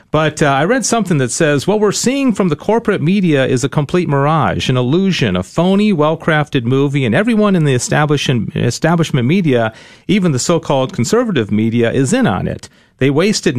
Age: 40-59